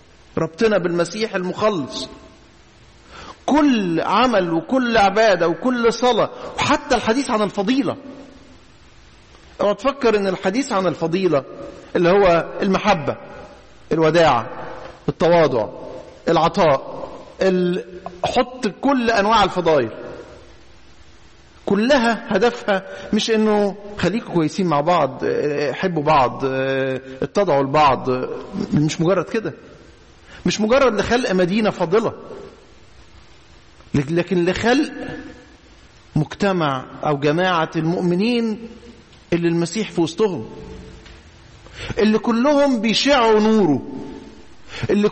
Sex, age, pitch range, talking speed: male, 50-69, 165-235 Hz, 85 wpm